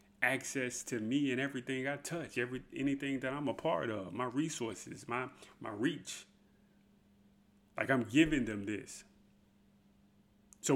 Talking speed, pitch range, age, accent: 140 wpm, 100-135 Hz, 30-49, American